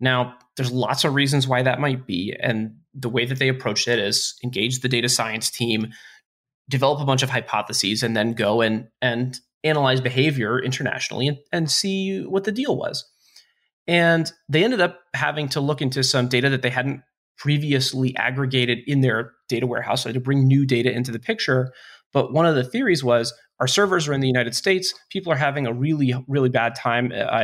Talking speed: 205 wpm